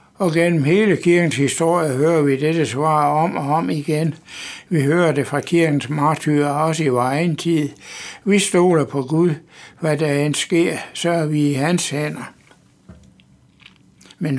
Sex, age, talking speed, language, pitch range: male, 60-79, 165 wpm, Danish, 145-165 Hz